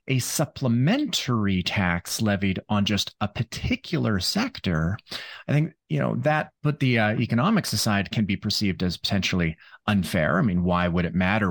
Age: 30-49